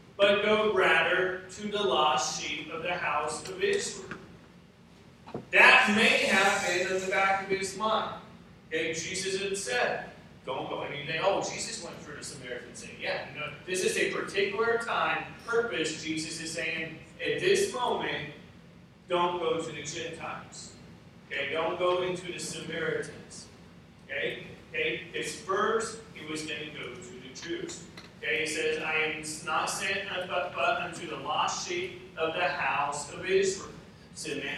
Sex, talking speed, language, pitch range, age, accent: male, 160 wpm, English, 160-200 Hz, 40-59, American